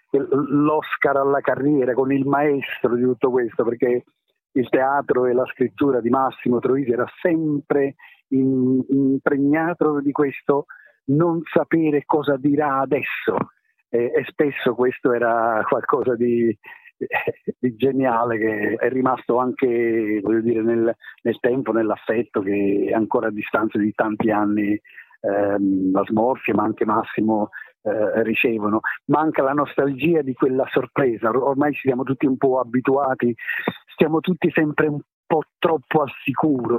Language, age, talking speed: Italian, 50-69, 135 wpm